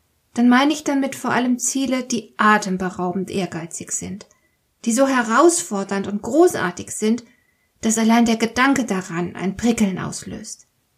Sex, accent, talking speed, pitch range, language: female, German, 135 wpm, 200-270 Hz, German